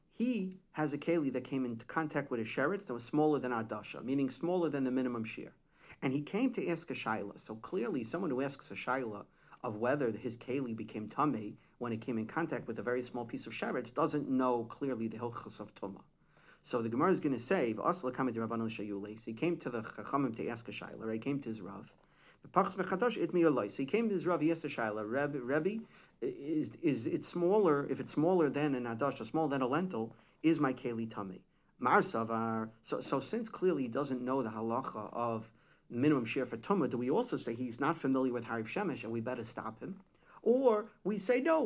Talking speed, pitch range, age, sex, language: 215 wpm, 115-170 Hz, 40-59, male, English